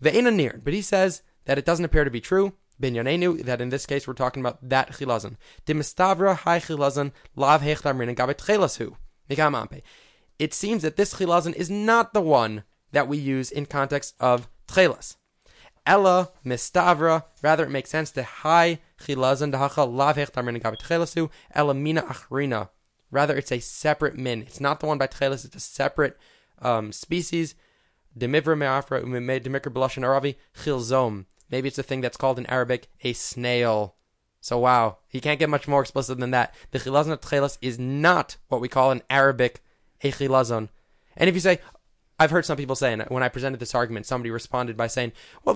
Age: 20-39